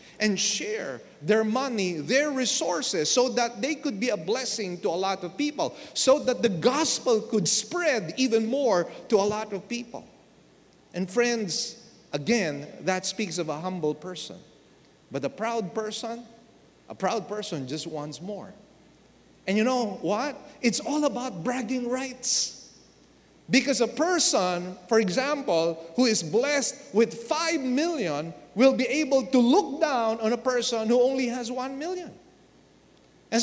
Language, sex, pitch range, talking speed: English, male, 225-300 Hz, 155 wpm